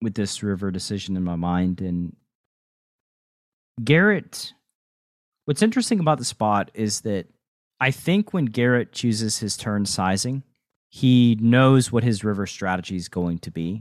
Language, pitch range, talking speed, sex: English, 95-130 Hz, 150 wpm, male